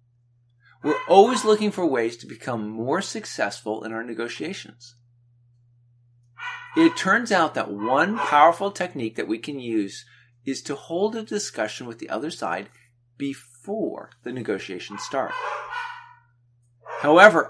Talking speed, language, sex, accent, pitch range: 125 wpm, English, male, American, 120-170 Hz